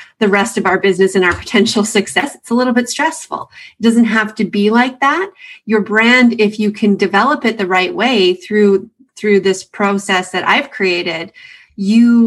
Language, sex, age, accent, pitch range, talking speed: English, female, 30-49, American, 195-235 Hz, 190 wpm